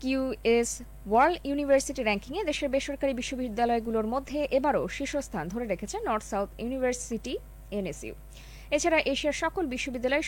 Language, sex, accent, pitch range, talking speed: Bengali, female, native, 185-300 Hz, 100 wpm